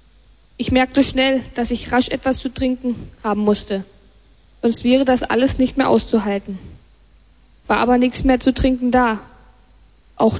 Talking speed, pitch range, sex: 150 wpm, 225-260 Hz, female